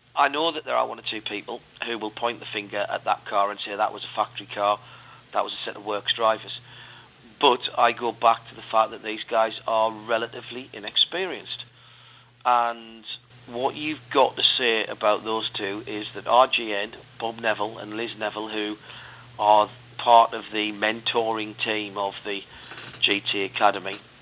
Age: 40-59